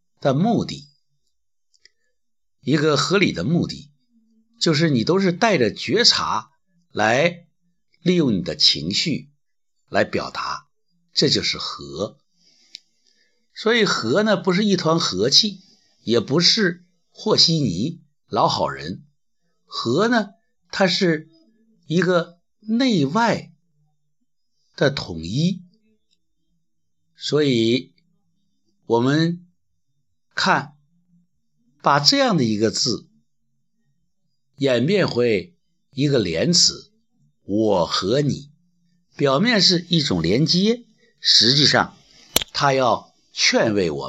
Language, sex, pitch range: Chinese, male, 145-200 Hz